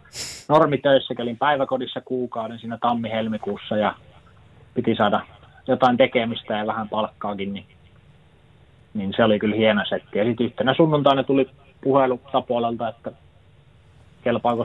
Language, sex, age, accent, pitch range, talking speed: Finnish, male, 30-49, native, 110-135 Hz, 125 wpm